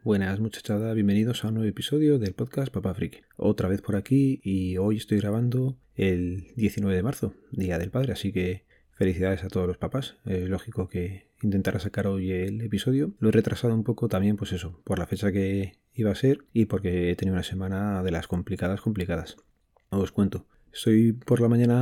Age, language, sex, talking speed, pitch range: 30-49, Spanish, male, 200 wpm, 95-110 Hz